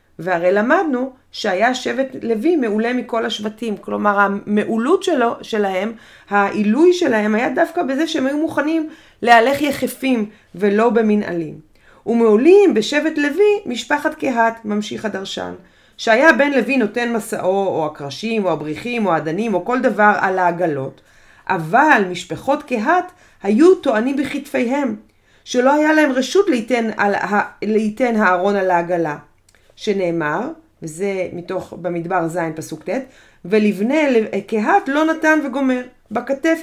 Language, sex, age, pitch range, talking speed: Hebrew, female, 30-49, 200-275 Hz, 125 wpm